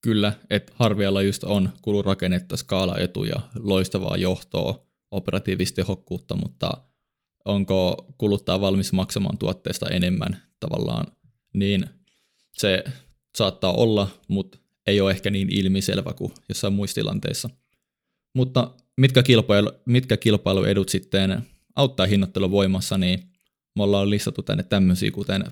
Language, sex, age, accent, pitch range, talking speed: Finnish, male, 20-39, native, 95-105 Hz, 115 wpm